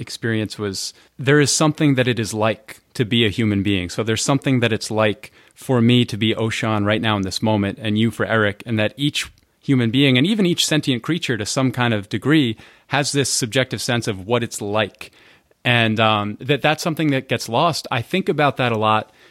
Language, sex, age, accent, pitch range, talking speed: English, male, 30-49, American, 110-140 Hz, 220 wpm